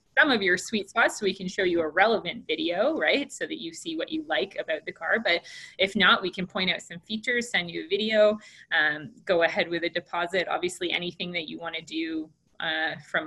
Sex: female